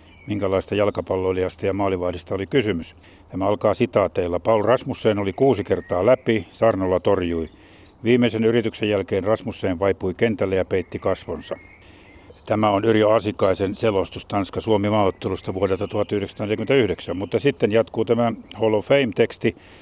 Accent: native